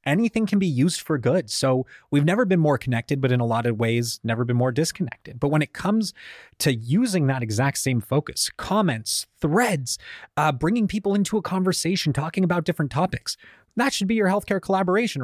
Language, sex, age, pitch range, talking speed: English, male, 30-49, 125-175 Hz, 195 wpm